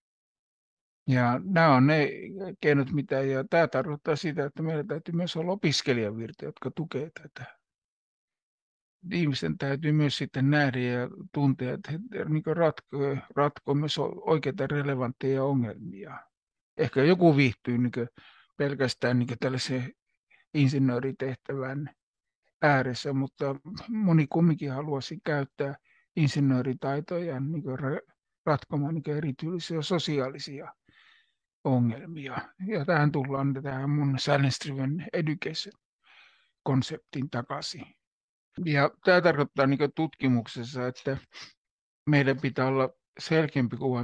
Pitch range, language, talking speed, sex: 130-150 Hz, English, 95 wpm, male